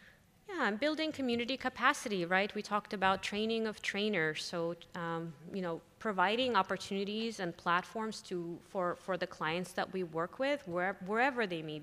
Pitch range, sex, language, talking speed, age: 165-200 Hz, female, English, 165 wpm, 20-39